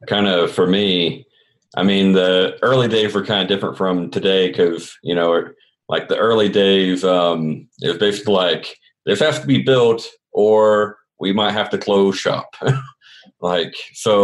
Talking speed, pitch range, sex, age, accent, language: 175 wpm, 95-120 Hz, male, 40-59, American, English